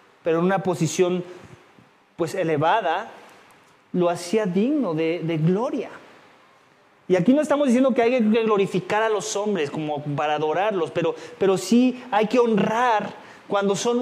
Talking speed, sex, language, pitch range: 150 wpm, male, English, 205-275 Hz